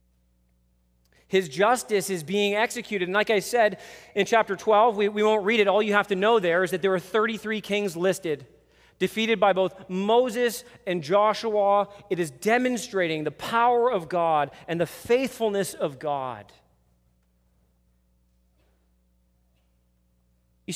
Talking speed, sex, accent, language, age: 140 wpm, male, American, English, 30-49